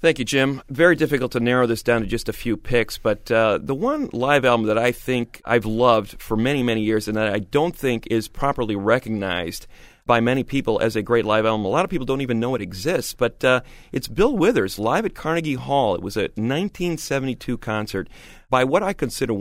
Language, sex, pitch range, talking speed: English, male, 95-125 Hz, 225 wpm